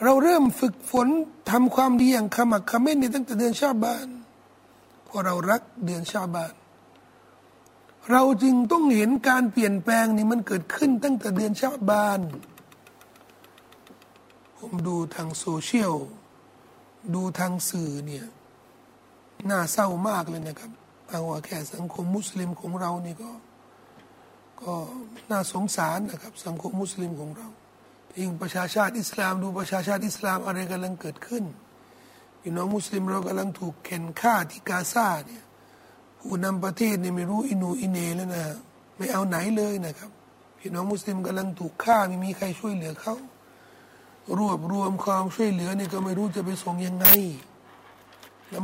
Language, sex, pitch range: Thai, male, 180-230 Hz